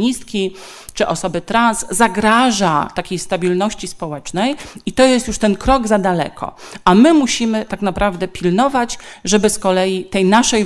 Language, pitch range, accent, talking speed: Polish, 180-220 Hz, native, 145 wpm